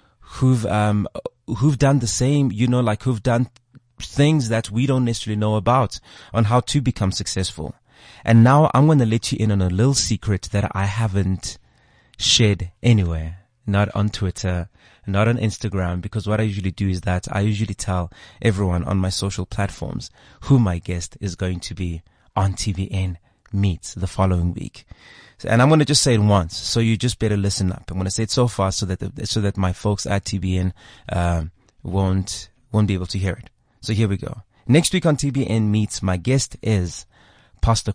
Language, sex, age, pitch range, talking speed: English, male, 30-49, 95-115 Hz, 195 wpm